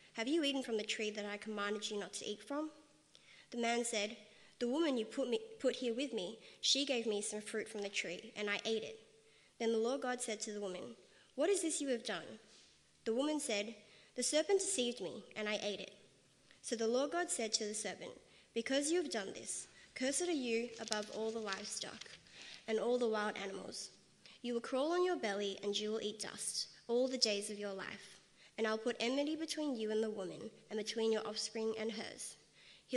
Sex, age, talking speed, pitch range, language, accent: female, 20-39, 220 wpm, 210-250 Hz, English, Australian